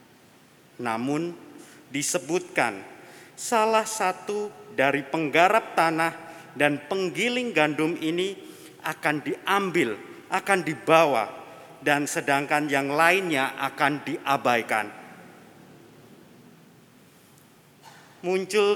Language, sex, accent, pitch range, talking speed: Indonesian, male, native, 155-195 Hz, 70 wpm